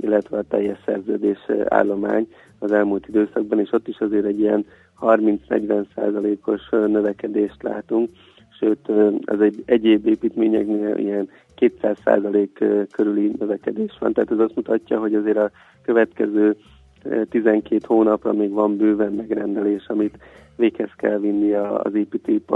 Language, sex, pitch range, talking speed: Hungarian, male, 105-110 Hz, 130 wpm